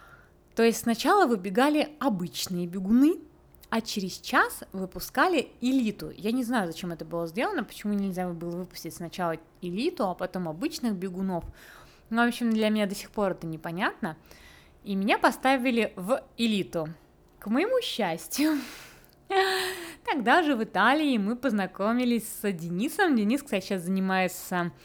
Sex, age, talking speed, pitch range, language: female, 20-39, 140 wpm, 190-290 Hz, Russian